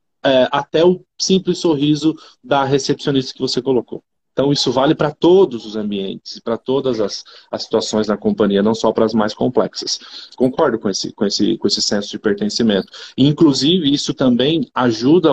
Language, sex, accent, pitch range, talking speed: Portuguese, male, Brazilian, 120-160 Hz, 155 wpm